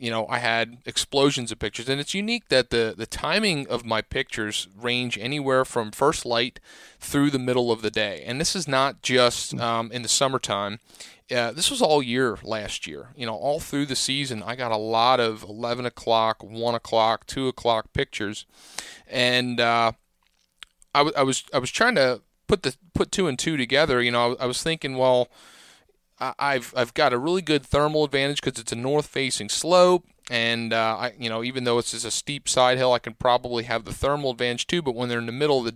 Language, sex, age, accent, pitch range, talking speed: English, male, 30-49, American, 115-140 Hz, 220 wpm